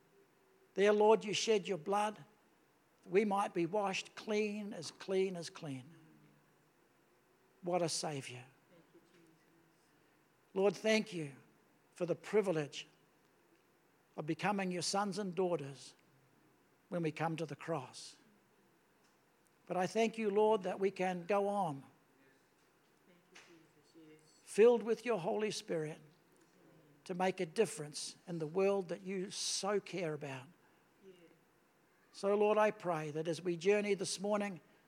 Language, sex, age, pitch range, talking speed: English, male, 60-79, 160-205 Hz, 125 wpm